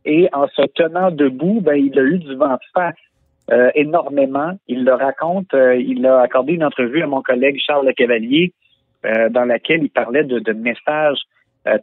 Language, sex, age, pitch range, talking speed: French, male, 50-69, 125-165 Hz, 195 wpm